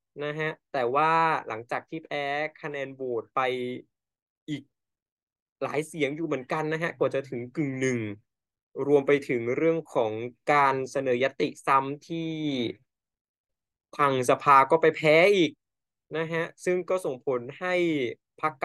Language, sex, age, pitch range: Thai, male, 20-39, 125-155 Hz